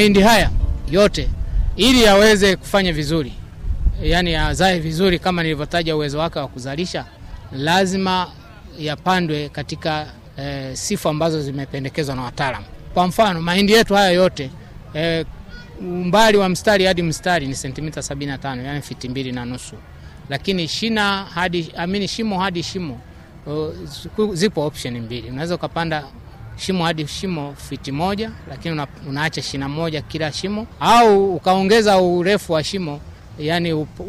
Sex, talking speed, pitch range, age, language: male, 130 wpm, 140-180 Hz, 30-49, Swahili